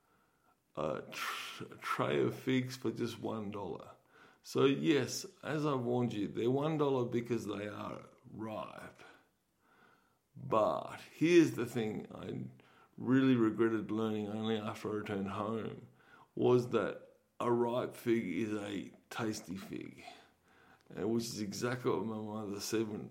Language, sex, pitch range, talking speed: English, male, 110-125 Hz, 140 wpm